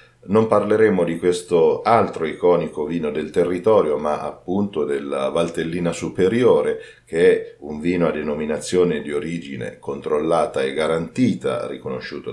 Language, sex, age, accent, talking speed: Italian, male, 40-59, native, 125 wpm